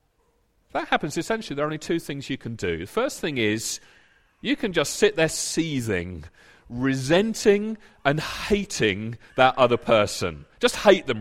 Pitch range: 150-225 Hz